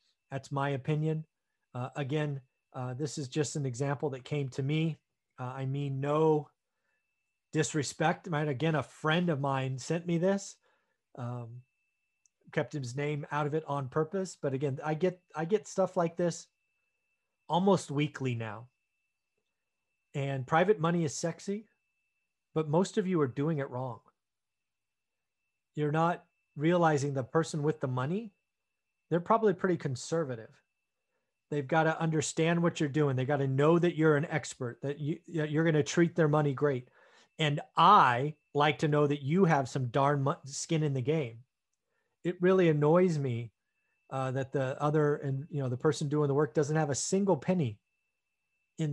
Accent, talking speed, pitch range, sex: American, 165 wpm, 135-165 Hz, male